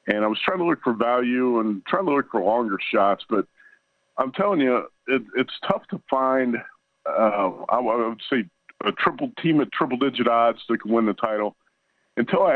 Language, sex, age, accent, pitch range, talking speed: English, male, 50-69, American, 100-120 Hz, 200 wpm